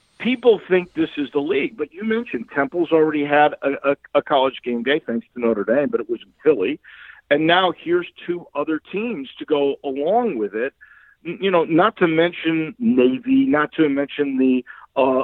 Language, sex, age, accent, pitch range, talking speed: English, male, 50-69, American, 140-215 Hz, 195 wpm